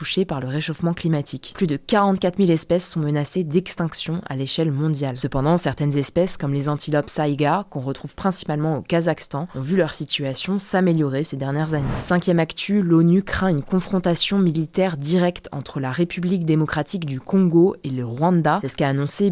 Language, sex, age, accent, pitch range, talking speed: French, female, 20-39, French, 145-180 Hz, 175 wpm